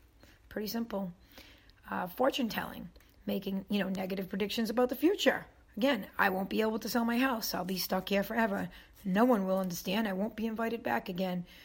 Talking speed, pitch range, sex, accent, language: 190 wpm, 200-250 Hz, female, American, English